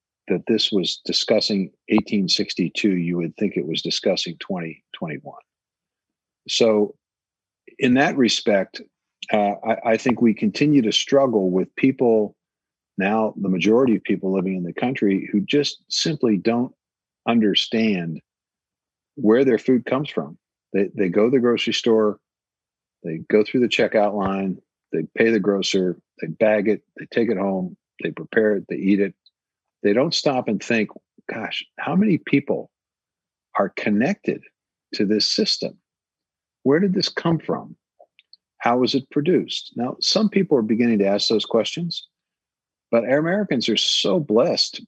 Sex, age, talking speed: male, 50-69, 150 wpm